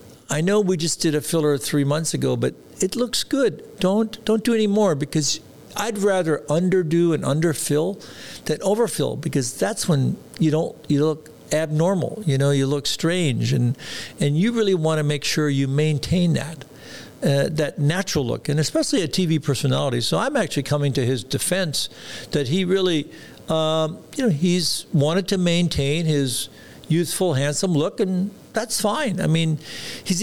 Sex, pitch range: male, 140-190 Hz